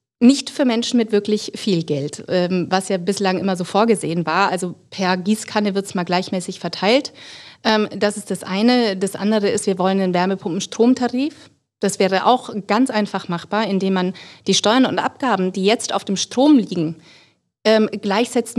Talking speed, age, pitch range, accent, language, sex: 170 wpm, 30-49, 185-215 Hz, German, German, female